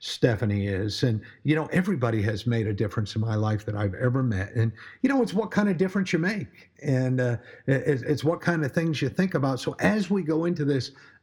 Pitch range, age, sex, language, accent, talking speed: 120-160 Hz, 50-69, male, English, American, 230 wpm